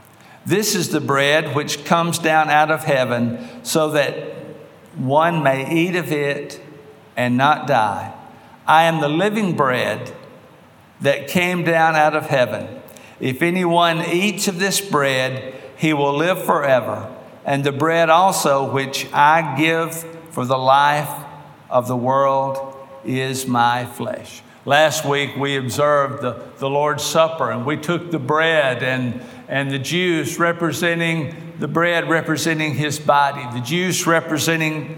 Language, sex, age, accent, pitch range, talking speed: English, male, 50-69, American, 140-165 Hz, 140 wpm